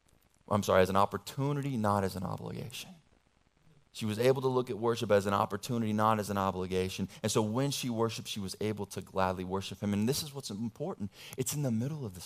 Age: 30-49